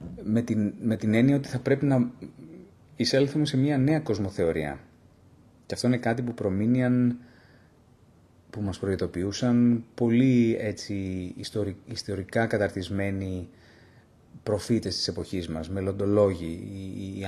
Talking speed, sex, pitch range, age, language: 110 wpm, male, 95-120 Hz, 30-49, Greek